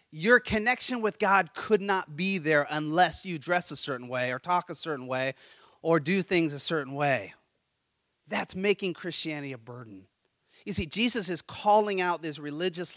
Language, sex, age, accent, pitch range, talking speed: English, male, 30-49, American, 150-200 Hz, 175 wpm